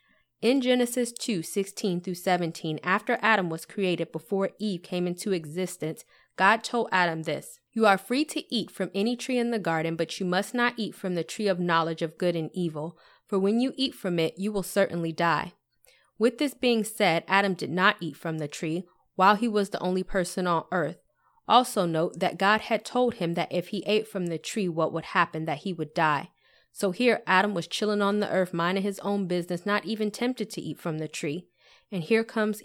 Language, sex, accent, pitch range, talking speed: English, female, American, 170-210 Hz, 215 wpm